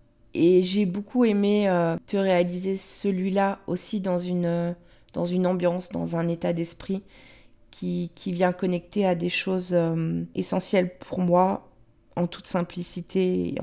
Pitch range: 175-200 Hz